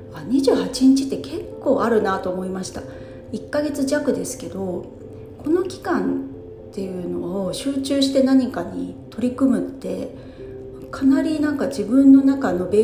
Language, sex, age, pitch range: Japanese, female, 40-59, 175-270 Hz